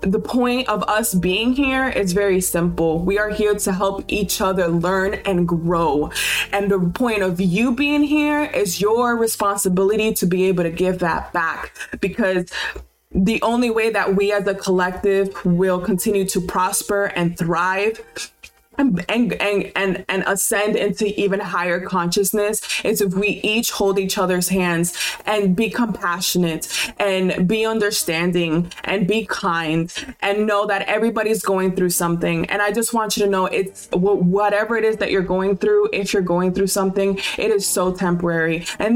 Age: 20-39